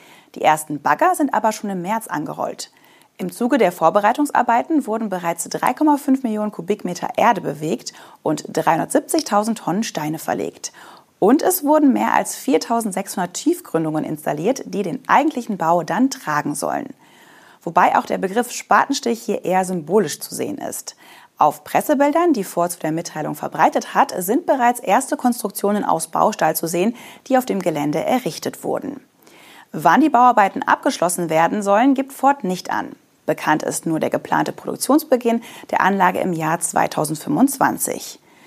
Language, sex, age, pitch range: German, female, 30-49, 170-270 Hz